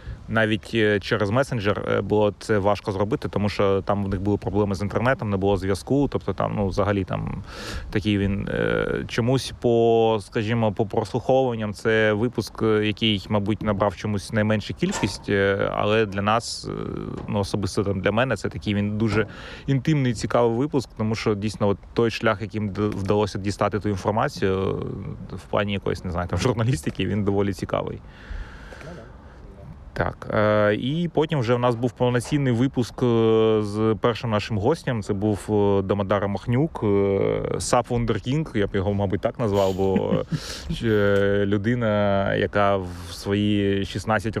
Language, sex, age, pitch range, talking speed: Ukrainian, male, 30-49, 100-115 Hz, 145 wpm